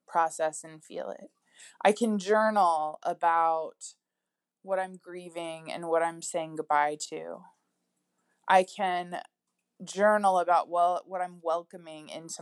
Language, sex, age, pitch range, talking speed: English, female, 20-39, 165-210 Hz, 125 wpm